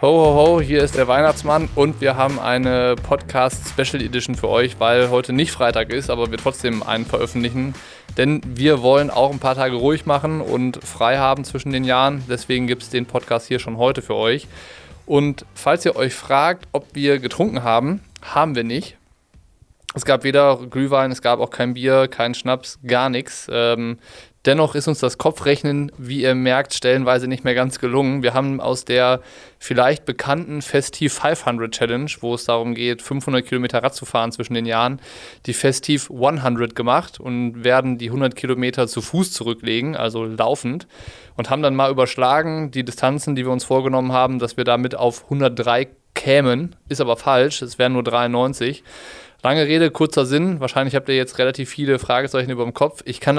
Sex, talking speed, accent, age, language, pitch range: male, 185 wpm, German, 20-39, German, 120-140 Hz